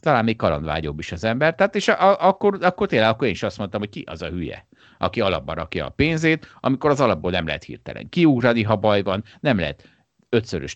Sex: male